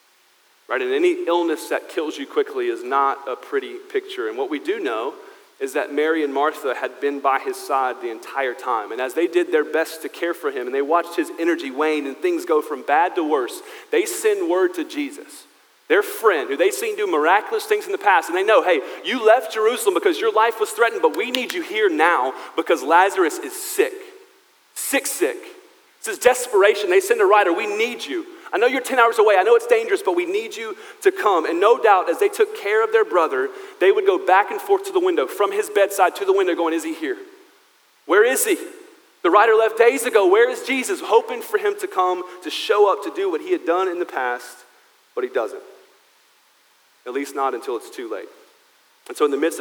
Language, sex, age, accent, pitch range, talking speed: English, male, 40-59, American, 290-425 Hz, 230 wpm